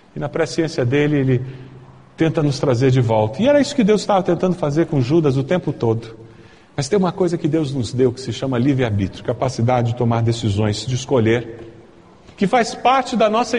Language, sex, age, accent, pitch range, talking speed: Portuguese, male, 50-69, Brazilian, 125-205 Hz, 205 wpm